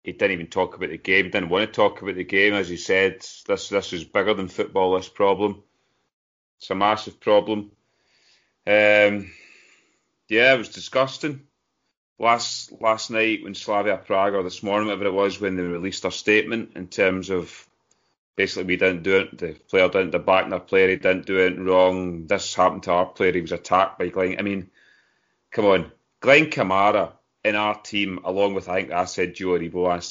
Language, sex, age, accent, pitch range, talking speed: English, male, 30-49, British, 90-105 Hz, 200 wpm